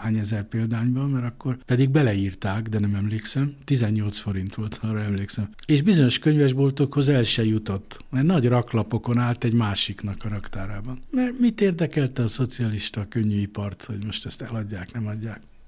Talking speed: 160 wpm